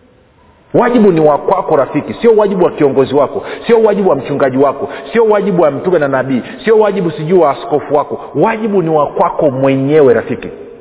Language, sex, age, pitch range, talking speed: Swahili, male, 50-69, 150-210 Hz, 170 wpm